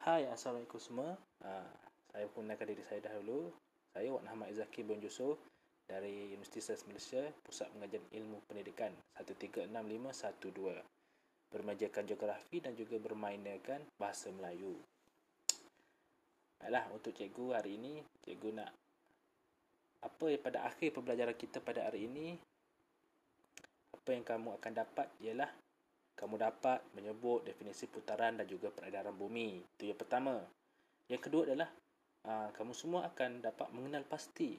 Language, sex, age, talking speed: Malay, male, 20-39, 135 wpm